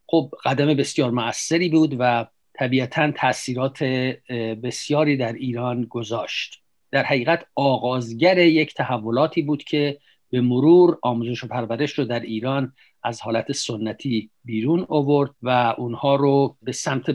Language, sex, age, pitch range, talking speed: Persian, male, 50-69, 120-150 Hz, 130 wpm